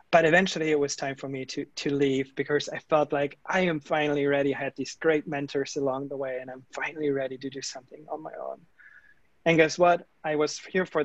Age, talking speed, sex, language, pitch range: 20-39, 235 wpm, male, English, 140-165 Hz